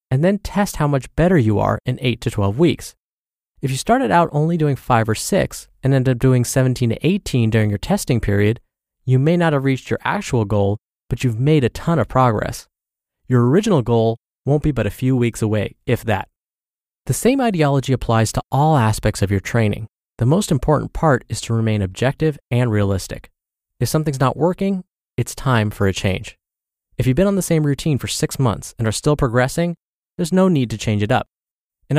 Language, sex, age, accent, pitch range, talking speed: English, male, 20-39, American, 105-150 Hz, 210 wpm